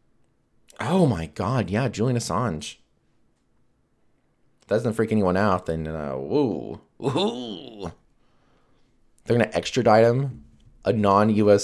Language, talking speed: English, 120 wpm